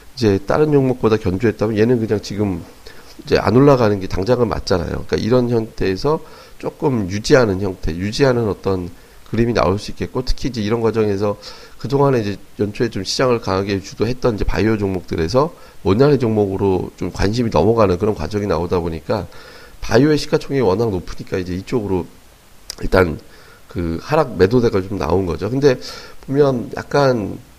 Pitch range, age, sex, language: 95-125 Hz, 40-59, male, Korean